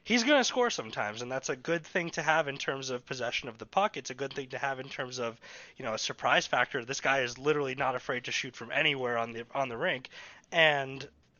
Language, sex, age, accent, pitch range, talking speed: English, male, 20-39, American, 130-175 Hz, 255 wpm